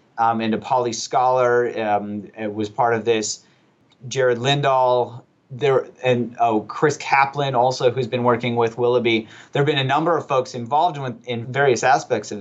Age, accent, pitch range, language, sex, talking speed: 30-49, American, 115-135 Hz, English, male, 165 wpm